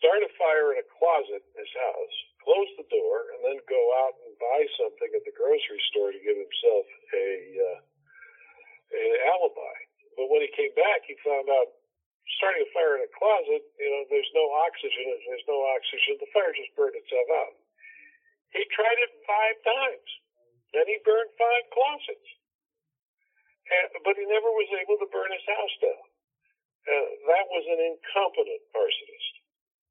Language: English